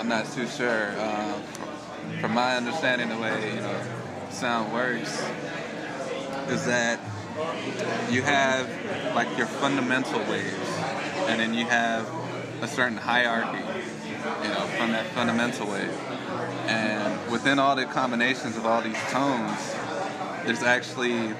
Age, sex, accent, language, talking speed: 20-39, male, American, English, 130 wpm